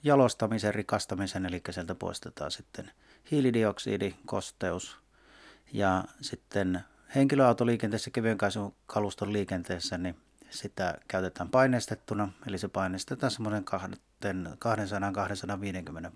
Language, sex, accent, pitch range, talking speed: Finnish, male, native, 95-115 Hz, 85 wpm